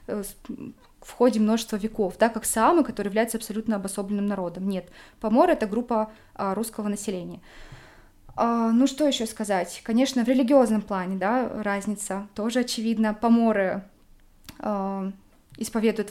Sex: female